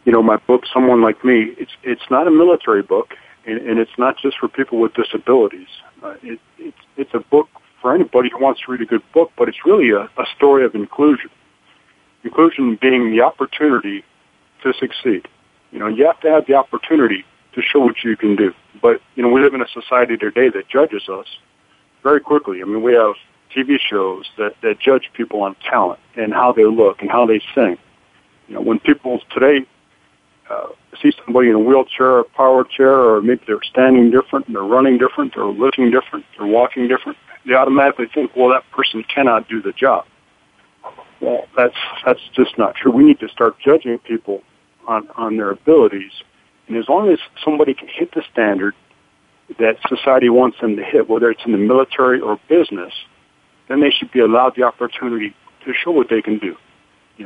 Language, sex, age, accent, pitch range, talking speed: English, male, 40-59, American, 115-145 Hz, 200 wpm